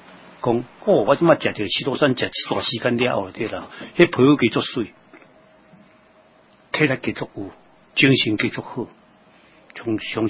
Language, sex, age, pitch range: Chinese, male, 60-79, 110-150 Hz